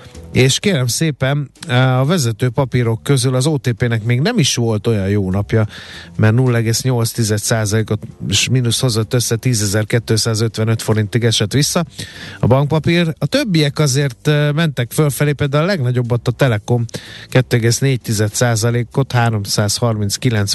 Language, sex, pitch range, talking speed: Hungarian, male, 110-135 Hz, 115 wpm